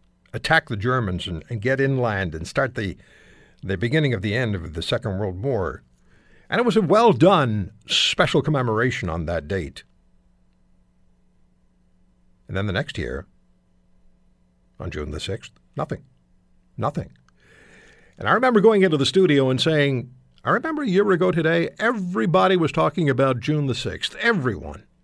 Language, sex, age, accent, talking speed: English, male, 60-79, American, 155 wpm